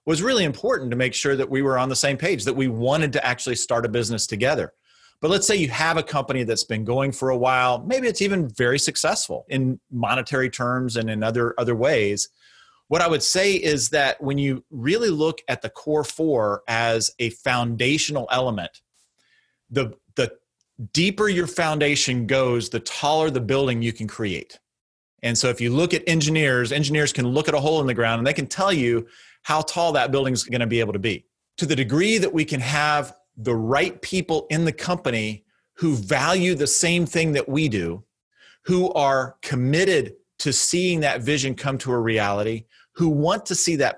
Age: 30-49